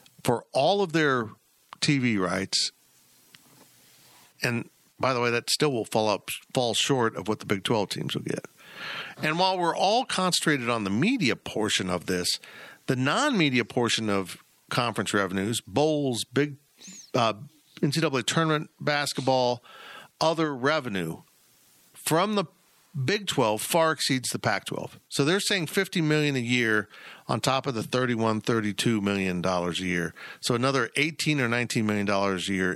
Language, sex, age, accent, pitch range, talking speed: English, male, 50-69, American, 105-150 Hz, 150 wpm